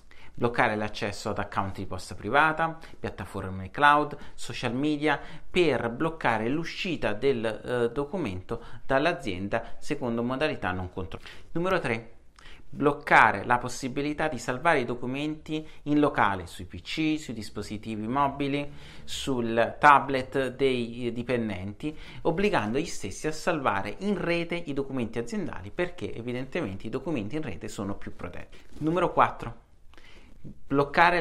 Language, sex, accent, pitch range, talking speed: Italian, male, native, 110-150 Hz, 125 wpm